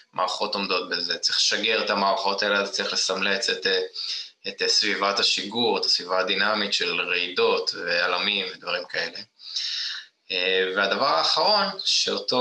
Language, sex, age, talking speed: Hebrew, male, 20-39, 125 wpm